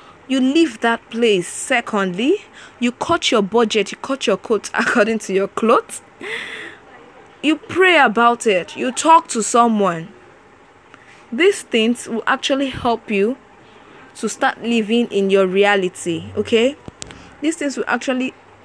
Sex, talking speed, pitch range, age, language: female, 135 wpm, 195-265 Hz, 20-39, English